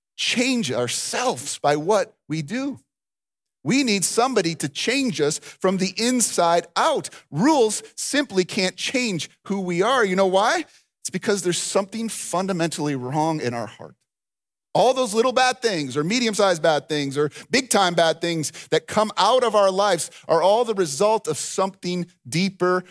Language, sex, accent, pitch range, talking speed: English, male, American, 135-190 Hz, 160 wpm